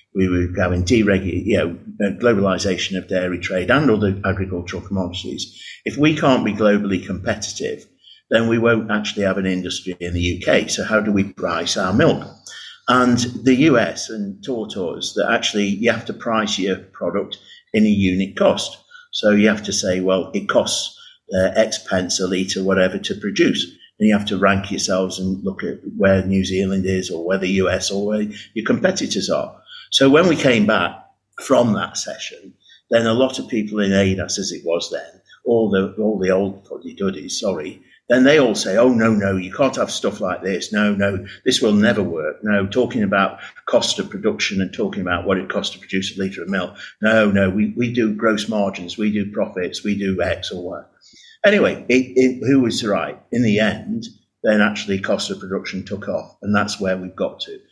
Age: 50-69